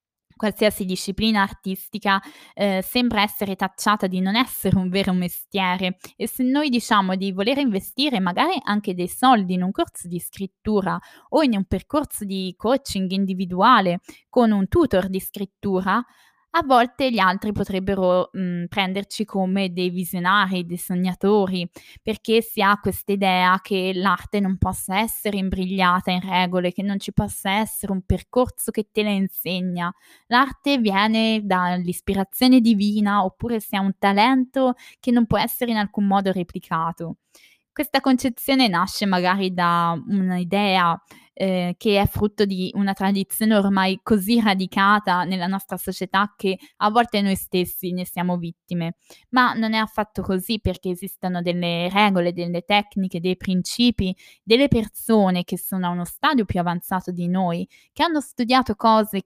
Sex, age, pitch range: female, 20-39, 185-220 Hz